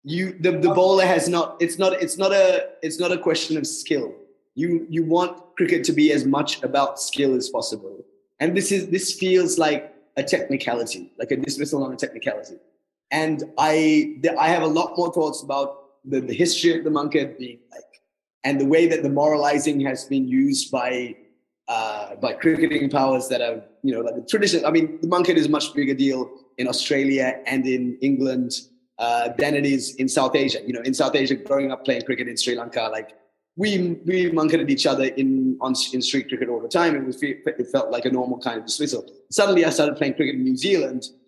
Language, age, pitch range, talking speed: English, 20-39, 135-185 Hz, 215 wpm